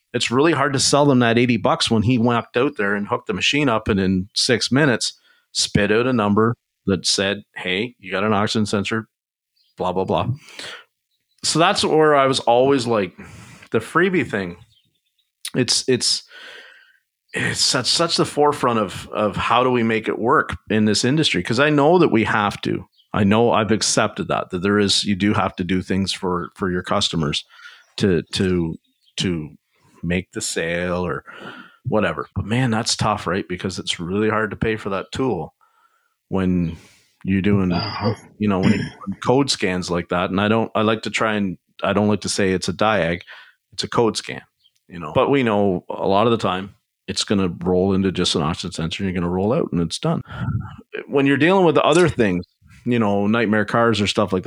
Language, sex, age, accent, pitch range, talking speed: English, male, 40-59, American, 95-120 Hz, 205 wpm